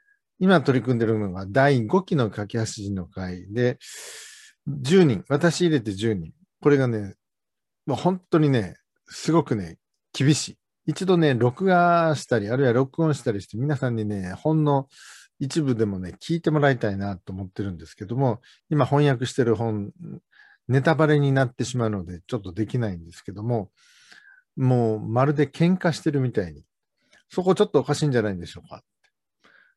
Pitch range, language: 110-155 Hz, Korean